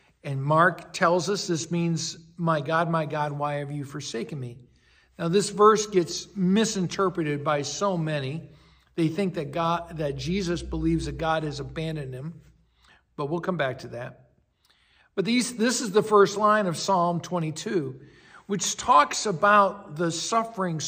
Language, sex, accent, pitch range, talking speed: English, male, American, 155-195 Hz, 160 wpm